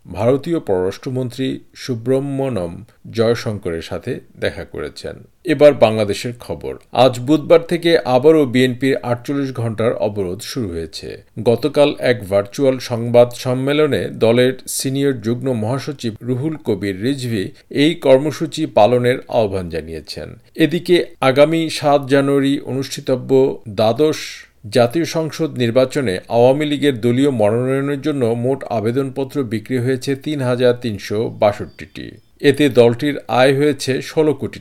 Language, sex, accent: Bengali, male, native